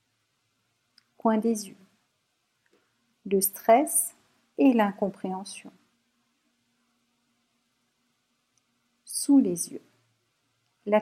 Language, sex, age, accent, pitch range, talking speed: French, female, 50-69, French, 190-235 Hz, 55 wpm